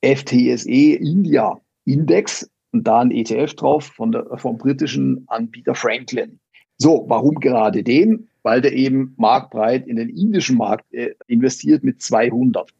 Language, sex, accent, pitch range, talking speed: German, male, German, 125-205 Hz, 135 wpm